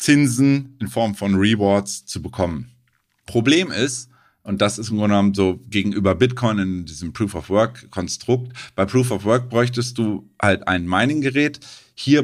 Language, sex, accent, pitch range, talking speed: German, male, German, 100-125 Hz, 140 wpm